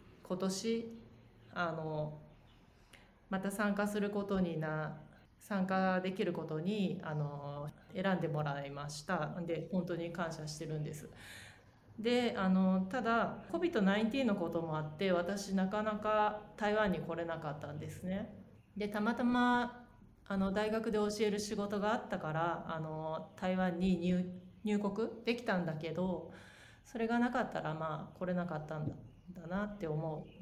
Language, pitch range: Chinese, 165-210 Hz